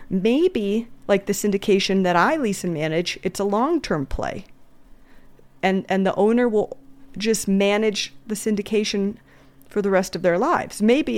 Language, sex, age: English, female, 30-49